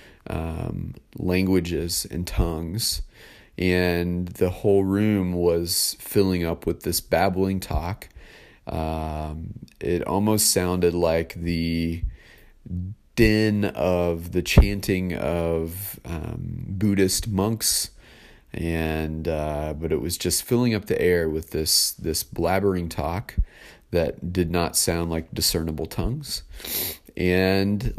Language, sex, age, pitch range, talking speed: English, male, 30-49, 85-100 Hz, 110 wpm